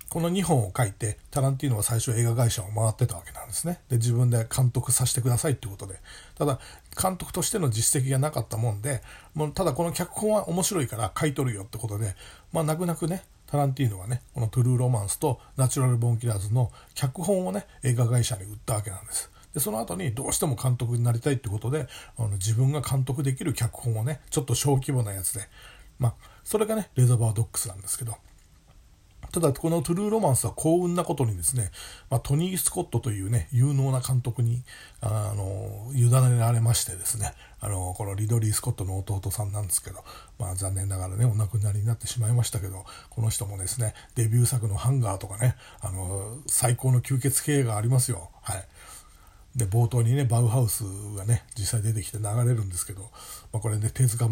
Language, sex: Japanese, male